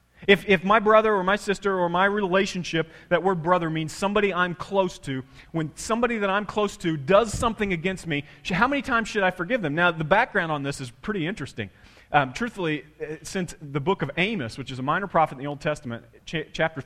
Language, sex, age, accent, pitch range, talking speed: English, male, 30-49, American, 135-195 Hz, 215 wpm